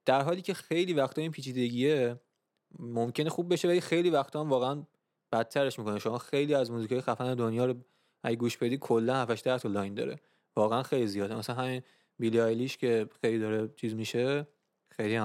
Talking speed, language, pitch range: 175 wpm, Persian, 115-150 Hz